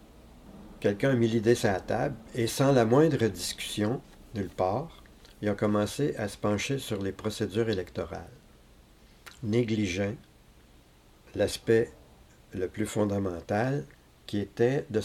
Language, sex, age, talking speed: French, male, 50-69, 130 wpm